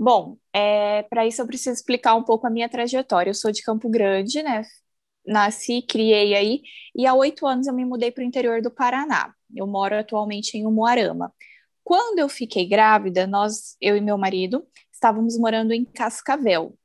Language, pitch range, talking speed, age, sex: Portuguese, 220-285 Hz, 180 wpm, 20-39, female